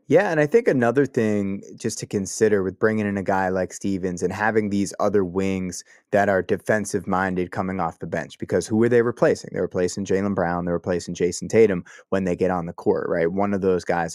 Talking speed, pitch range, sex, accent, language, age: 220 wpm, 90-110 Hz, male, American, English, 20-39